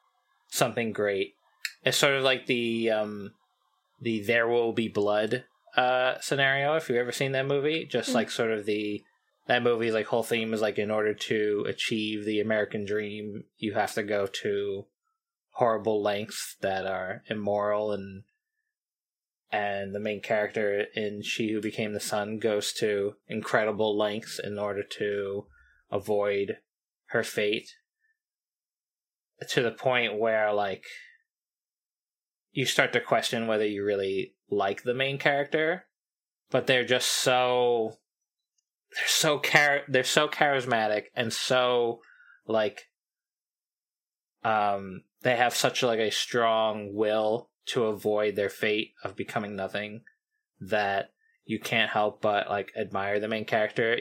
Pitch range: 105-130 Hz